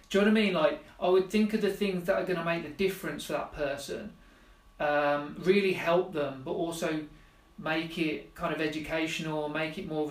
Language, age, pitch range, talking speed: English, 40-59, 145-175 Hz, 225 wpm